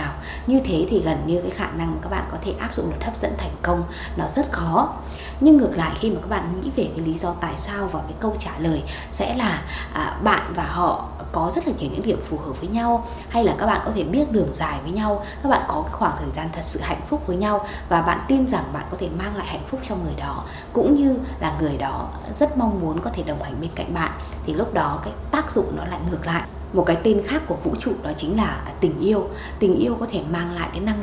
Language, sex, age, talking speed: Vietnamese, female, 20-39, 275 wpm